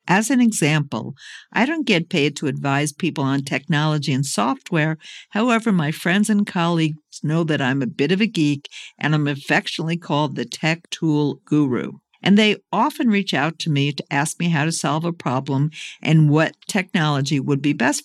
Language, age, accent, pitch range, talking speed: English, 60-79, American, 145-185 Hz, 185 wpm